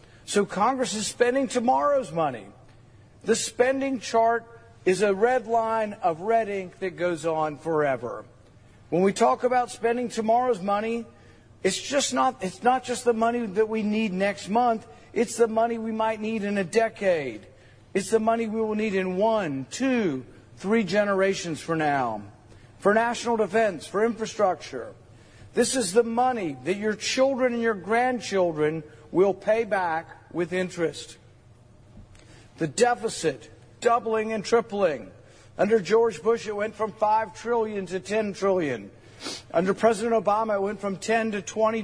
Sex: male